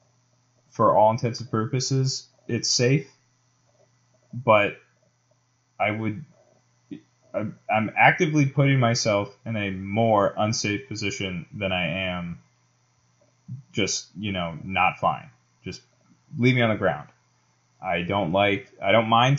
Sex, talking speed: male, 120 wpm